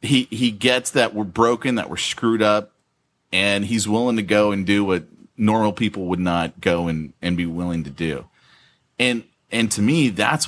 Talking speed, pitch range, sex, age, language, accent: 195 wpm, 90-115 Hz, male, 30-49, English, American